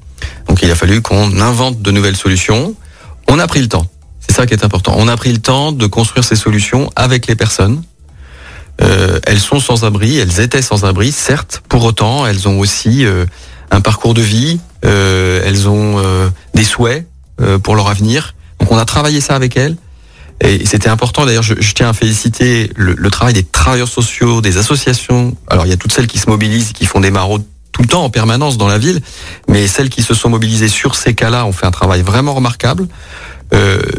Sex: male